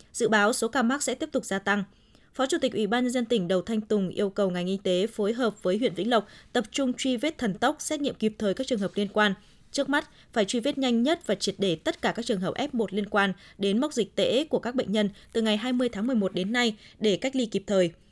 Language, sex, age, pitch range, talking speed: Vietnamese, female, 20-39, 200-255 Hz, 280 wpm